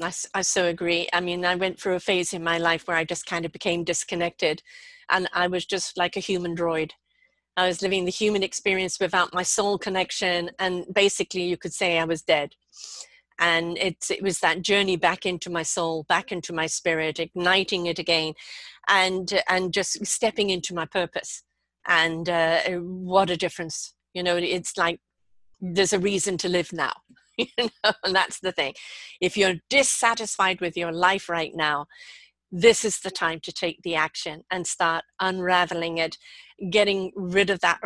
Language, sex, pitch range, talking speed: English, female, 175-205 Hz, 185 wpm